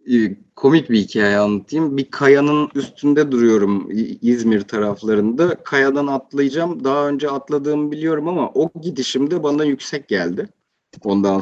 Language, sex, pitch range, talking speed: Turkish, male, 130-200 Hz, 120 wpm